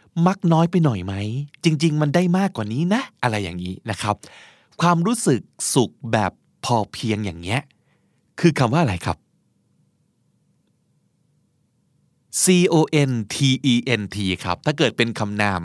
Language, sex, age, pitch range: Thai, male, 20-39, 105-155 Hz